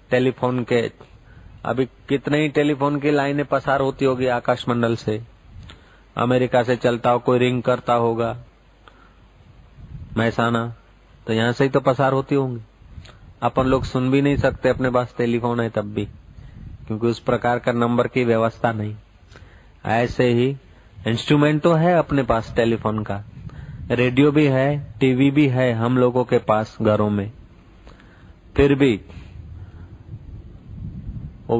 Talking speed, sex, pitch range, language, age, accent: 140 wpm, male, 110-135 Hz, Hindi, 40-59, native